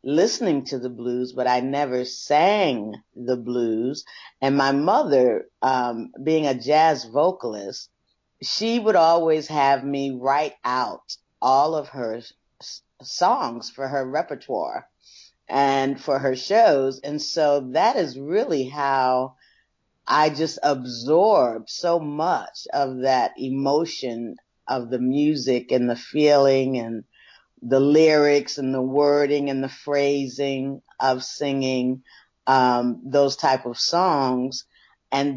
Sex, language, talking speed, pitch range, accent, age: female, English, 125 wpm, 130-160 Hz, American, 40-59